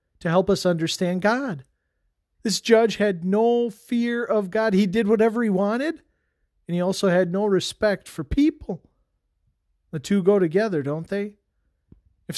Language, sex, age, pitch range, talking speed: English, male, 40-59, 155-205 Hz, 155 wpm